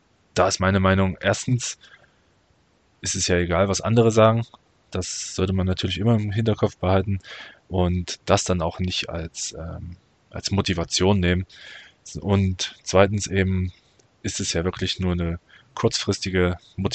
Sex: male